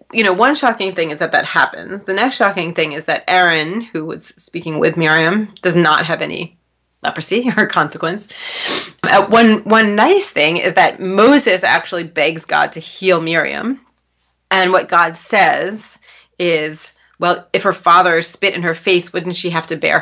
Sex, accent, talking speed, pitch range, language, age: female, American, 180 wpm, 165-215 Hz, English, 30-49